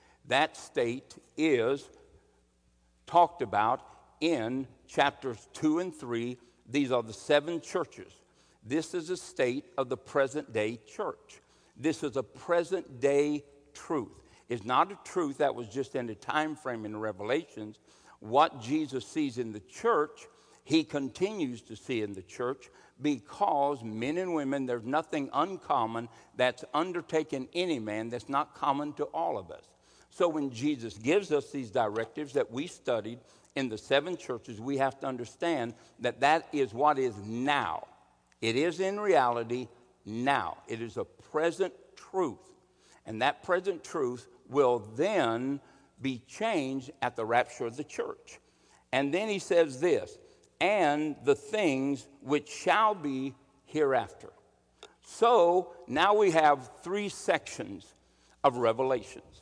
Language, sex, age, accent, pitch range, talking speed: English, male, 60-79, American, 120-165 Hz, 140 wpm